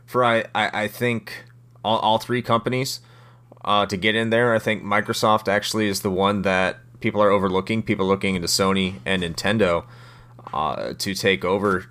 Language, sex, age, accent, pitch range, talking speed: English, male, 30-49, American, 90-120 Hz, 180 wpm